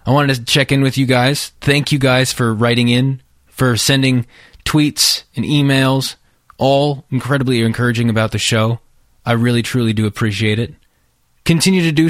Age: 20-39